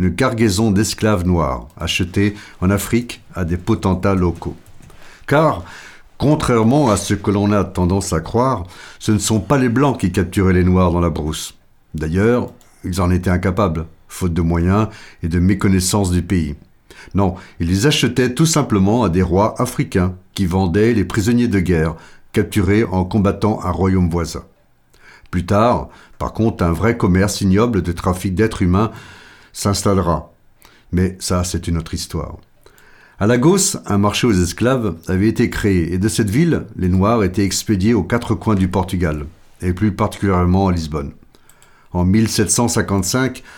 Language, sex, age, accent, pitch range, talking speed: French, male, 60-79, French, 90-110 Hz, 160 wpm